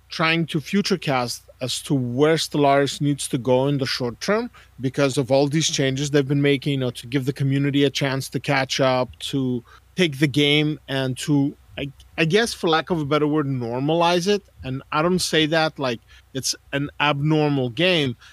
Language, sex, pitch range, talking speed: English, male, 135-160 Hz, 200 wpm